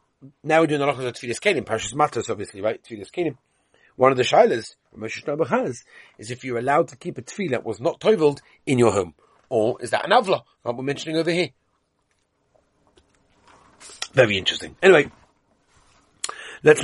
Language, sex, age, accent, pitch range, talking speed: English, male, 40-59, British, 125-175 Hz, 180 wpm